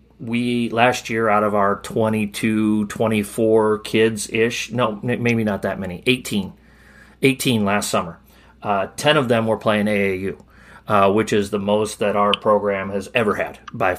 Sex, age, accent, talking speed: male, 30-49, American, 165 wpm